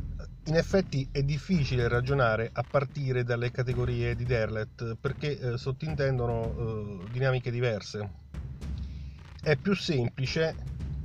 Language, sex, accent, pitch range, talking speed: Italian, male, native, 110-140 Hz, 110 wpm